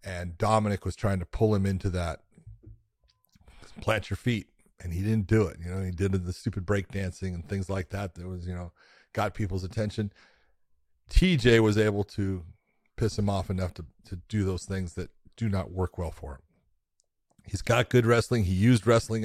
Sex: male